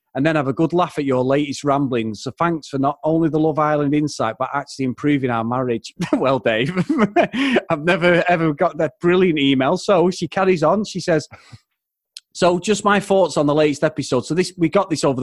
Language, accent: English, British